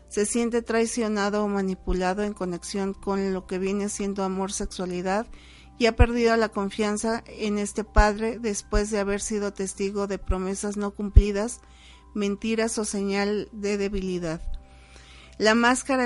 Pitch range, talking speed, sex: 190-225 Hz, 140 wpm, female